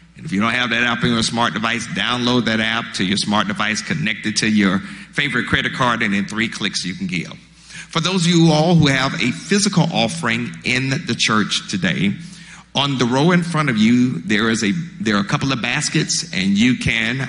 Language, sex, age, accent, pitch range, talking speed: English, male, 50-69, American, 115-170 Hz, 220 wpm